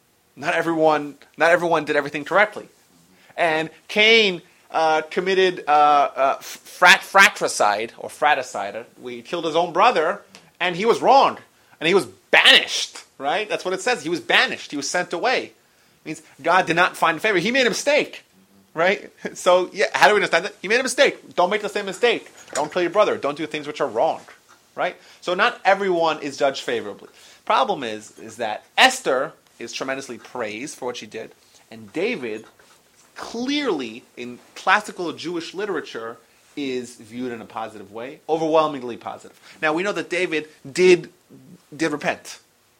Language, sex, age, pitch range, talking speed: English, male, 30-49, 135-180 Hz, 170 wpm